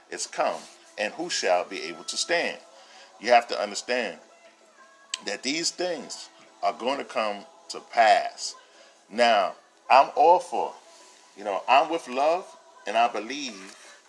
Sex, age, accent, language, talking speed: male, 40-59, American, English, 145 wpm